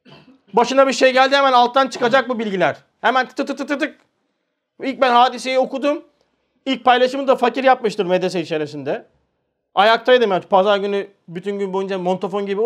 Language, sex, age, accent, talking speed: Turkish, male, 40-59, native, 175 wpm